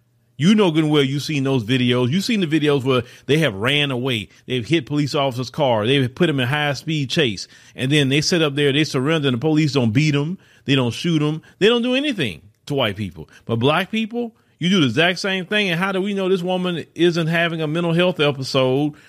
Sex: male